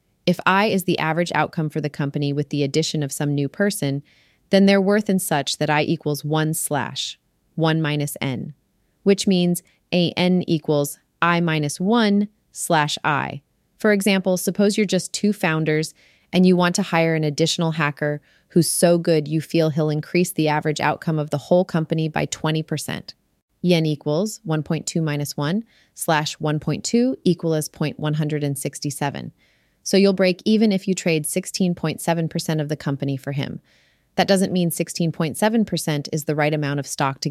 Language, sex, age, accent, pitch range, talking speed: English, female, 30-49, American, 150-180 Hz, 165 wpm